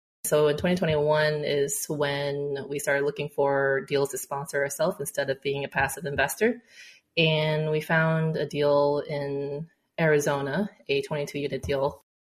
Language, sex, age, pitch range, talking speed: English, female, 20-39, 145-160 Hz, 160 wpm